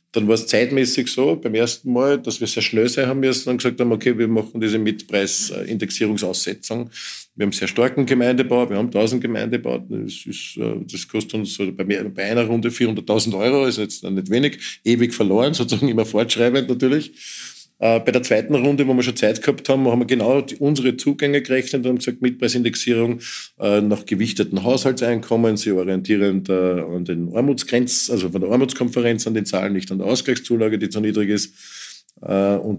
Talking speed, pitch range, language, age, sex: 180 wpm, 100-120 Hz, German, 50-69, male